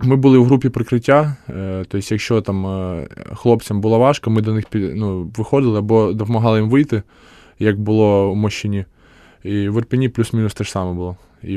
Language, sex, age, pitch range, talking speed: Ukrainian, male, 20-39, 95-115 Hz, 170 wpm